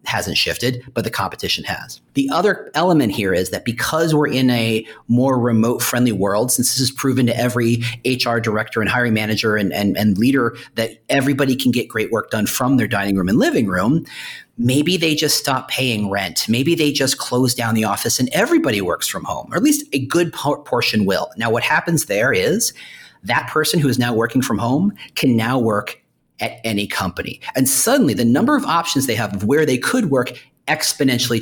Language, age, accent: English, 40-59, American